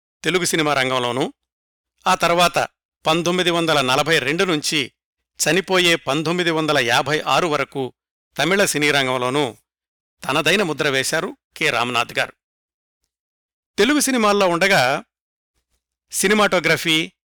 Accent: native